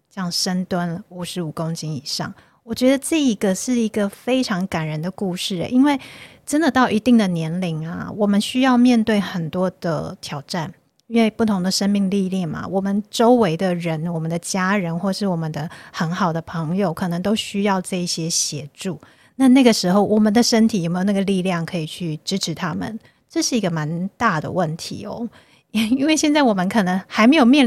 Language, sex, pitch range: Chinese, female, 175-220 Hz